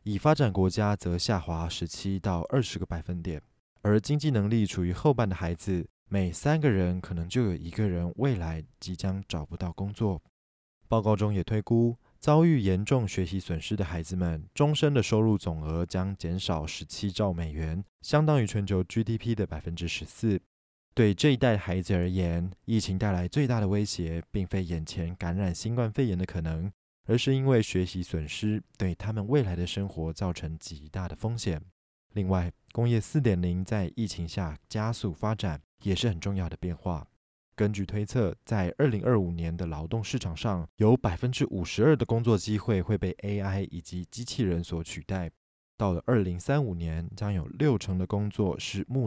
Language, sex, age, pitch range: Chinese, male, 20-39, 85-110 Hz